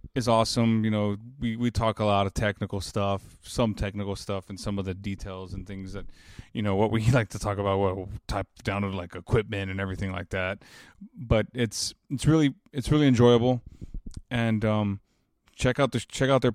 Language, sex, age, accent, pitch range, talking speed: English, male, 20-39, American, 100-120 Hz, 205 wpm